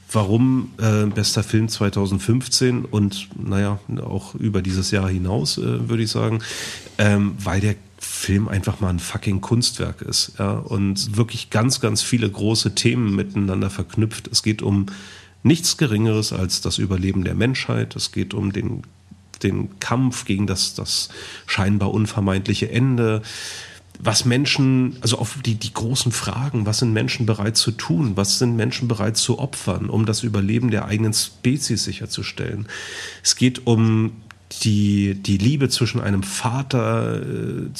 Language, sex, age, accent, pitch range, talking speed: German, male, 40-59, German, 100-120 Hz, 150 wpm